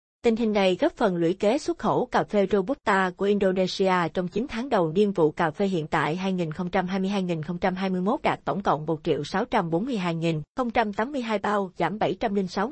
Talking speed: 140 wpm